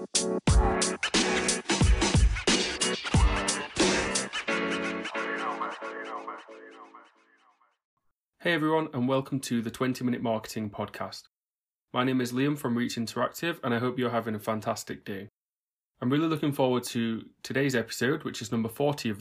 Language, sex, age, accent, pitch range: English, male, 20-39, British, 110-135 Hz